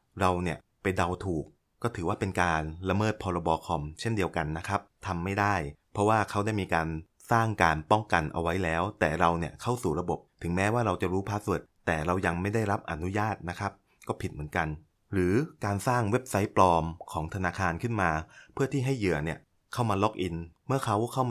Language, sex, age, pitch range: Thai, male, 20-39, 85-110 Hz